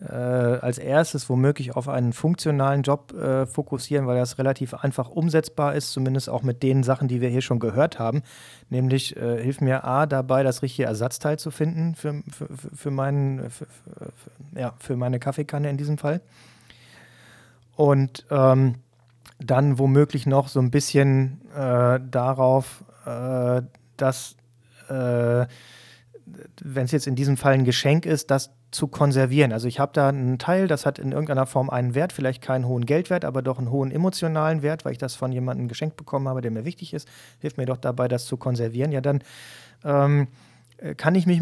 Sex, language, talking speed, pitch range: male, German, 170 wpm, 125-150 Hz